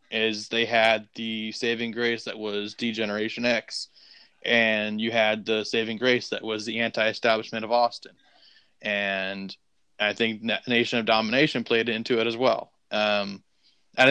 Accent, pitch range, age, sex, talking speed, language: American, 110-125 Hz, 20-39, male, 150 wpm, English